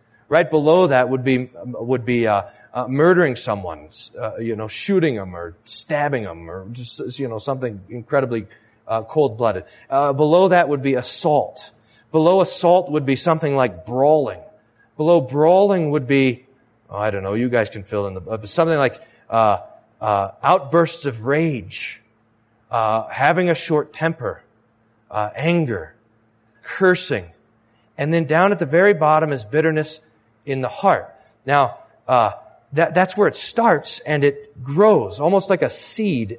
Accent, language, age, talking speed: American, English, 40-59, 160 wpm